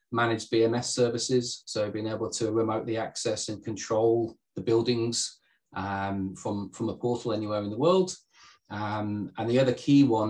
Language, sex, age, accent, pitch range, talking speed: English, male, 30-49, British, 100-120 Hz, 165 wpm